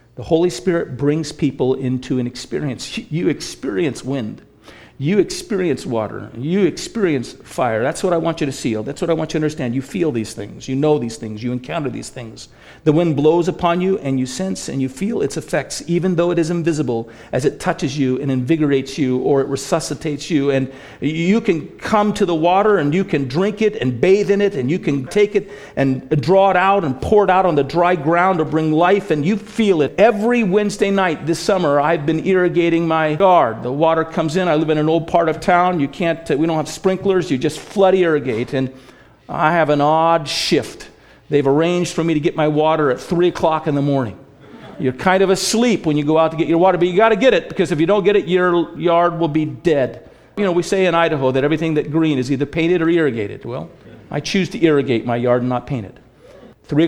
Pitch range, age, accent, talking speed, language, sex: 140-180 Hz, 50-69, American, 235 wpm, English, male